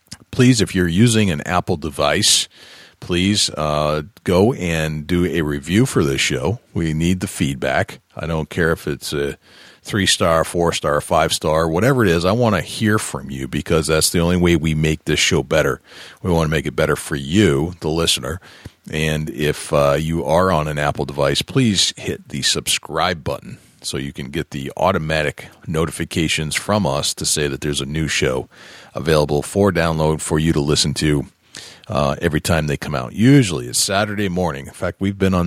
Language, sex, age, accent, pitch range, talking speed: English, male, 40-59, American, 75-95 Hz, 190 wpm